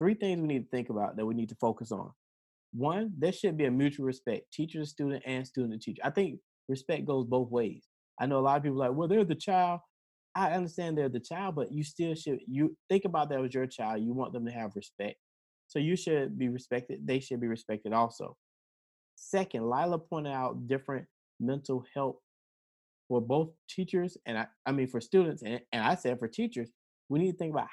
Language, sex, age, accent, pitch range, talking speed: English, male, 20-39, American, 120-155 Hz, 215 wpm